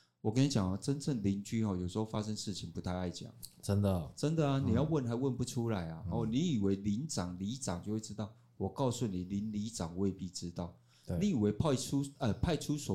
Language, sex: Chinese, male